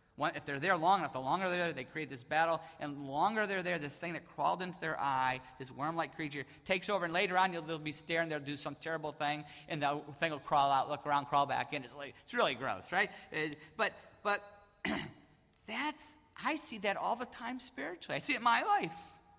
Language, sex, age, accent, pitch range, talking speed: English, male, 50-69, American, 155-210 Hz, 240 wpm